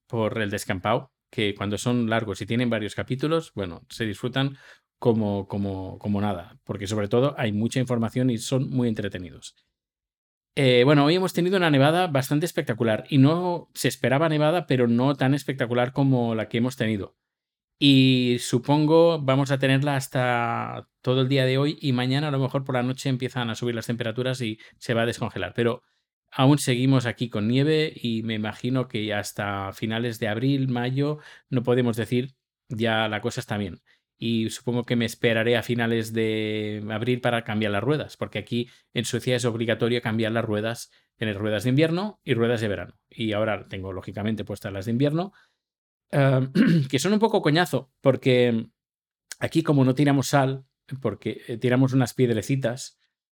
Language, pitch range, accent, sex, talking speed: Spanish, 110-135 Hz, Spanish, male, 175 wpm